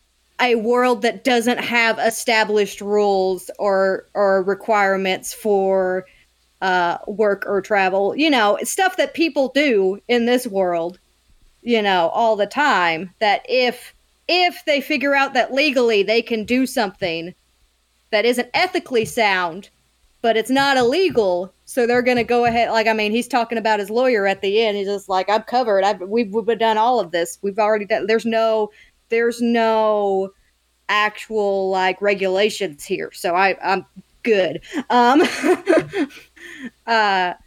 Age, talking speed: 30-49, 150 wpm